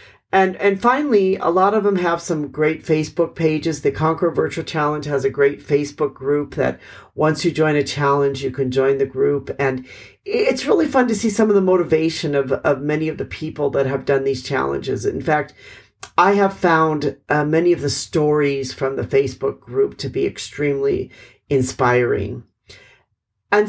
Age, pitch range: 50-69, 140-175 Hz